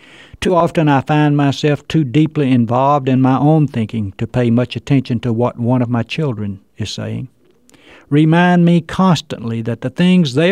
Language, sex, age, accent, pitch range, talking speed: English, male, 60-79, American, 115-165 Hz, 175 wpm